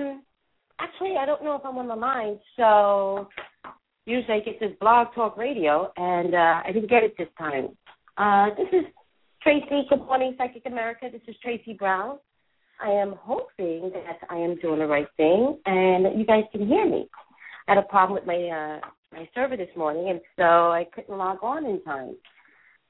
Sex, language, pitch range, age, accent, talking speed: female, English, 170-240 Hz, 40-59, American, 190 wpm